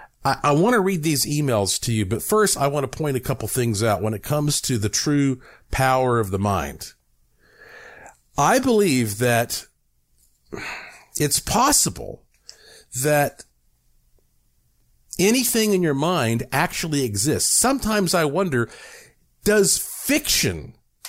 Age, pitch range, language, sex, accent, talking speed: 50-69, 115-175 Hz, English, male, American, 130 wpm